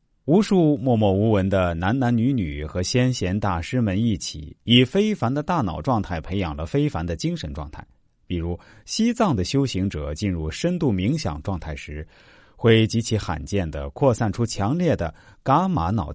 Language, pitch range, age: Chinese, 90-135 Hz, 30-49